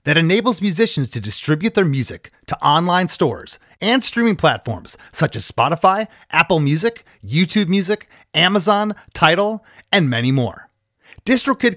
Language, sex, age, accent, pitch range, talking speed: English, male, 30-49, American, 140-210 Hz, 135 wpm